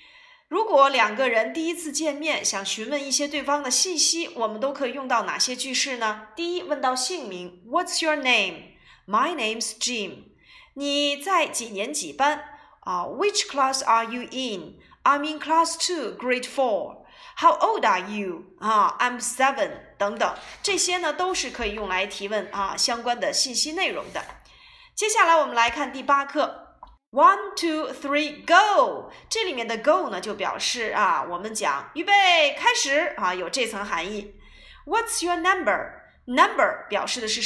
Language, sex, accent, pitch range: Chinese, female, native, 225-335 Hz